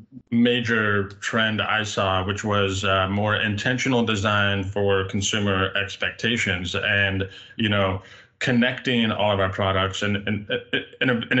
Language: English